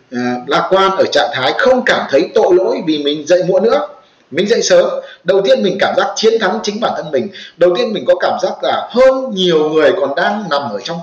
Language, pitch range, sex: Vietnamese, 175-270 Hz, male